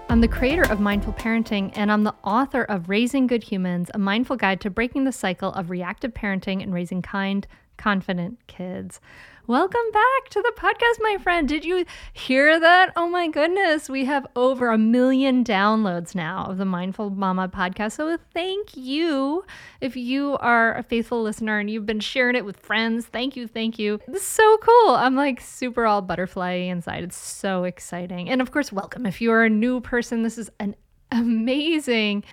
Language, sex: English, female